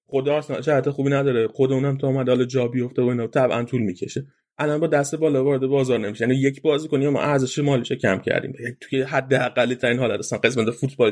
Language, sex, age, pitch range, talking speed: Persian, male, 30-49, 115-140 Hz, 235 wpm